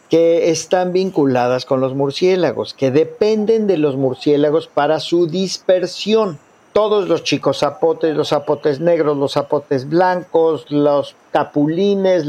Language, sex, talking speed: Spanish, male, 125 wpm